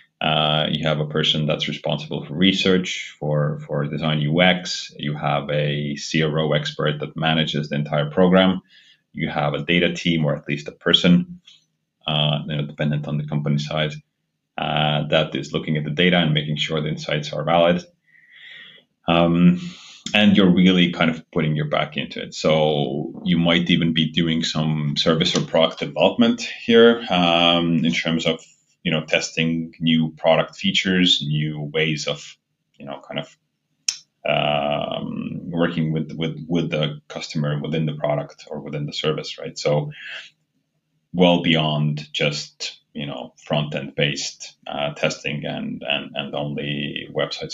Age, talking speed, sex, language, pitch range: 30-49, 155 wpm, male, English, 75-85 Hz